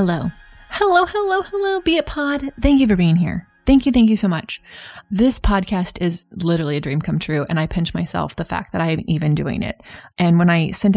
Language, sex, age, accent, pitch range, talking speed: English, female, 20-39, American, 165-195 Hz, 230 wpm